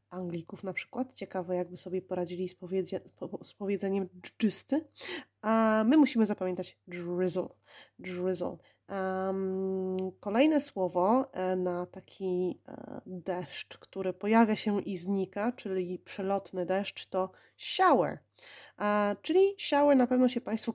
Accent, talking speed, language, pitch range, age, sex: native, 110 wpm, Polish, 180-225 Hz, 20-39, female